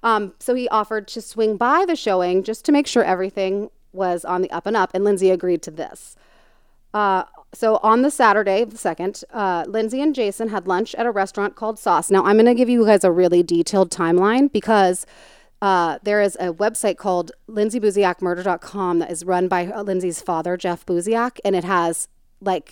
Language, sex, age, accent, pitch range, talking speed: English, female, 30-49, American, 170-215 Hz, 200 wpm